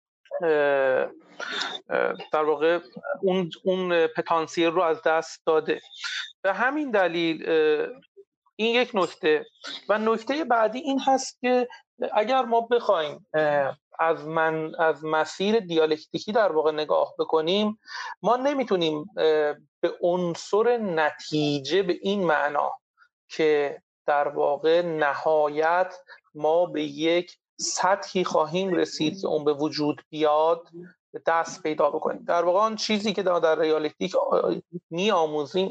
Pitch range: 160-235 Hz